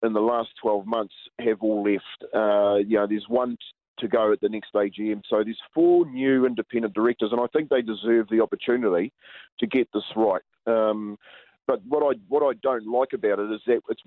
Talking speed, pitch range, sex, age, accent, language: 215 wpm, 110-130 Hz, male, 40-59, Australian, English